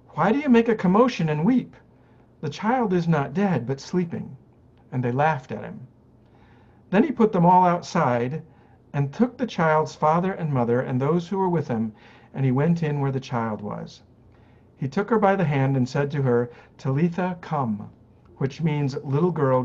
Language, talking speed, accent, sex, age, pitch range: English, 190 wpm, American, male, 50-69, 120-160 Hz